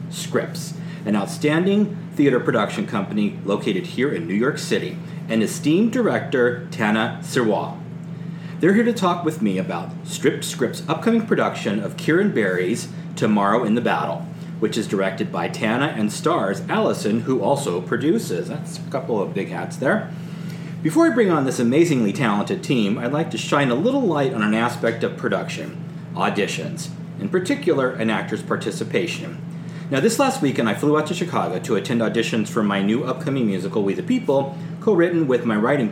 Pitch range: 135-180 Hz